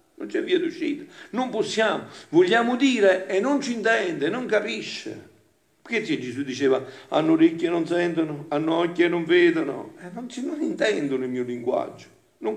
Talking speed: 160 wpm